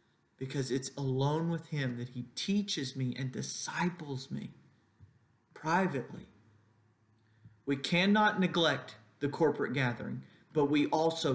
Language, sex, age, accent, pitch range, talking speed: English, male, 40-59, American, 130-160 Hz, 115 wpm